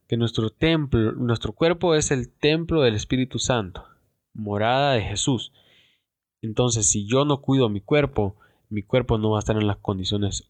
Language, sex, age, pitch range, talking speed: Spanish, male, 20-39, 100-125 Hz, 165 wpm